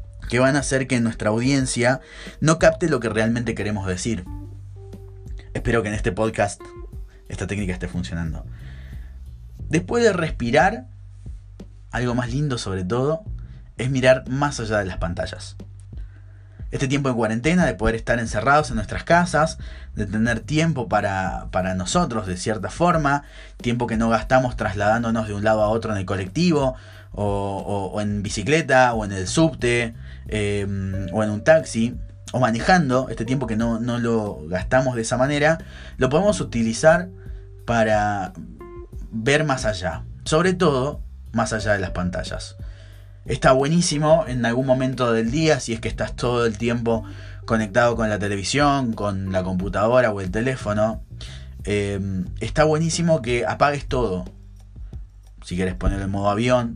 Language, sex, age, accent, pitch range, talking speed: Spanish, male, 20-39, Argentinian, 95-125 Hz, 155 wpm